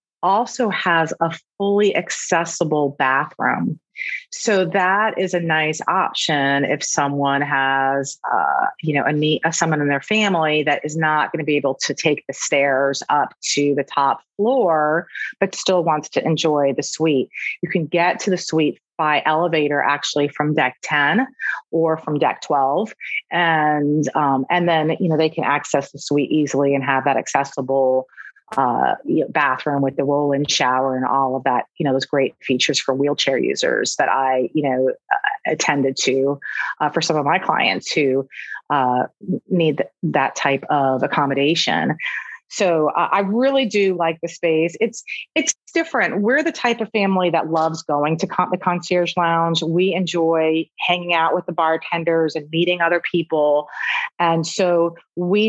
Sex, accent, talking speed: female, American, 170 wpm